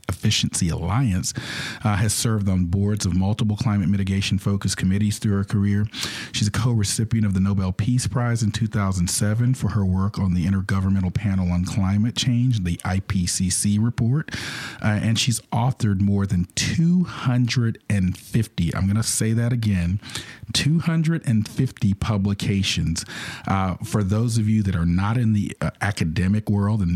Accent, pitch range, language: American, 95-110 Hz, English